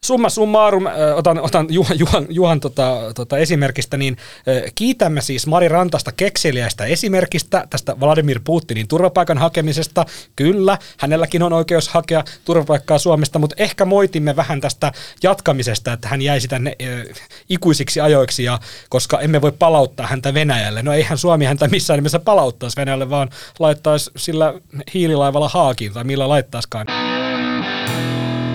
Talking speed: 135 wpm